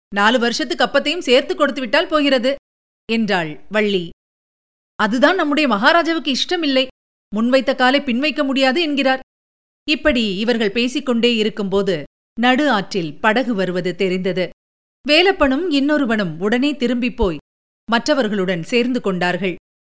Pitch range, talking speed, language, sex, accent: 195-270 Hz, 110 wpm, Tamil, female, native